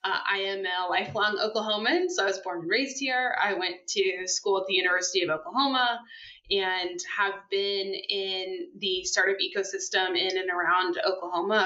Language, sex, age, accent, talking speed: English, female, 20-39, American, 170 wpm